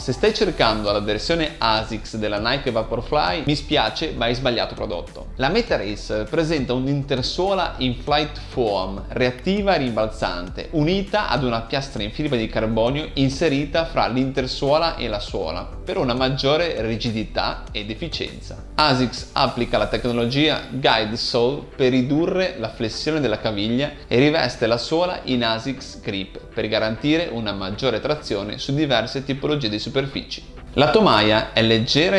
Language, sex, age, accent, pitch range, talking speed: Italian, male, 30-49, native, 110-150 Hz, 145 wpm